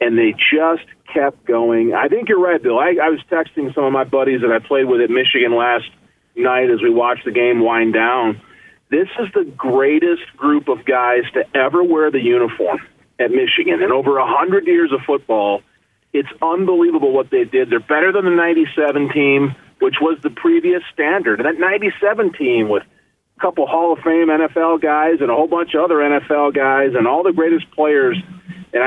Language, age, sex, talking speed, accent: English, 40-59, male, 195 wpm, American